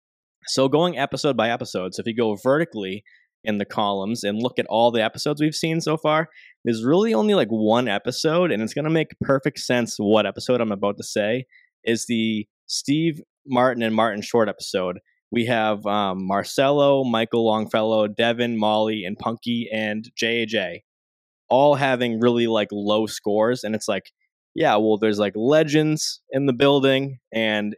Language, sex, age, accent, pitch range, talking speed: English, male, 20-39, American, 105-130 Hz, 175 wpm